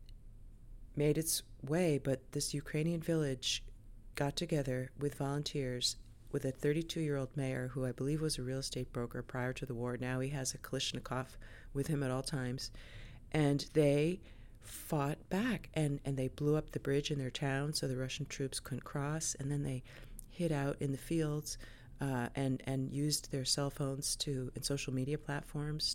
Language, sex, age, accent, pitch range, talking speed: English, female, 40-59, American, 120-145 Hz, 180 wpm